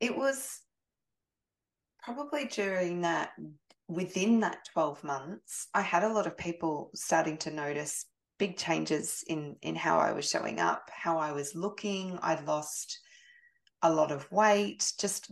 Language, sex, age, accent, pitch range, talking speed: English, female, 20-39, Australian, 155-190 Hz, 150 wpm